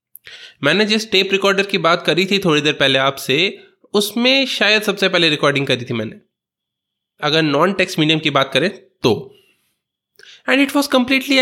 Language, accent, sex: Hindi, native, male